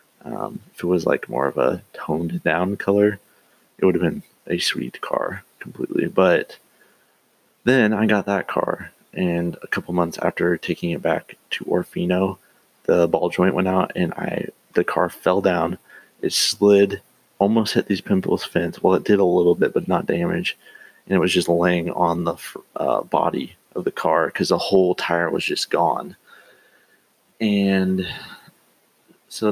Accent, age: American, 30-49